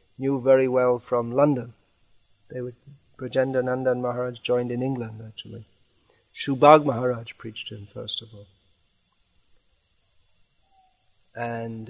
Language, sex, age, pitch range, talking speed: English, male, 40-59, 110-125 Hz, 115 wpm